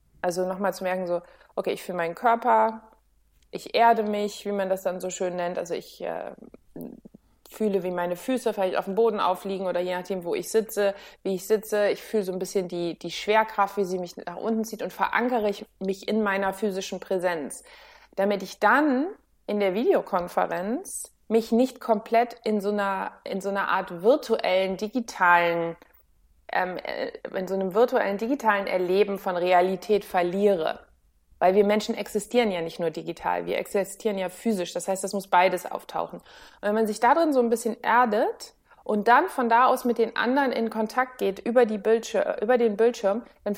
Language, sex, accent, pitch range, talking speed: German, female, German, 190-230 Hz, 185 wpm